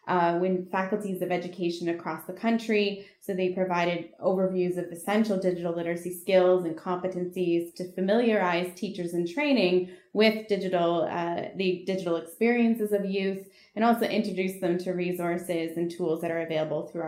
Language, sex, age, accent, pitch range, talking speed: English, female, 20-39, American, 175-205 Hz, 155 wpm